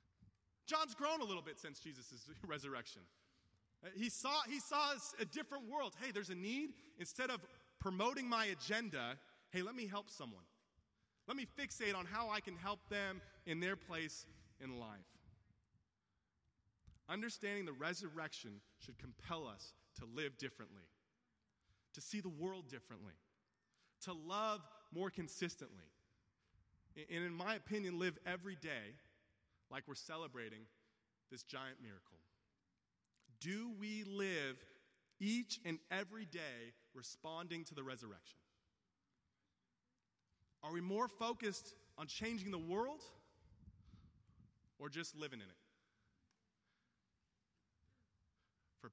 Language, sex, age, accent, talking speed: English, male, 30-49, American, 120 wpm